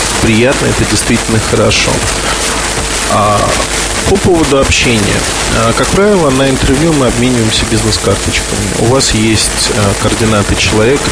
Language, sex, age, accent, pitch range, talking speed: Russian, male, 20-39, native, 100-120 Hz, 120 wpm